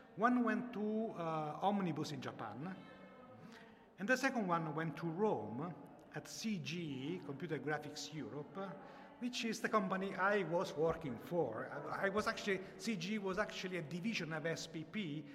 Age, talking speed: 50-69, 135 wpm